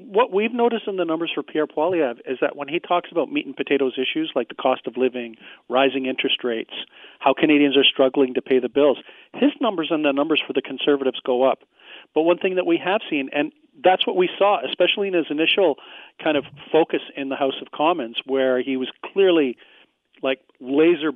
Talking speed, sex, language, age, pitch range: 215 wpm, male, English, 40-59, 135-185 Hz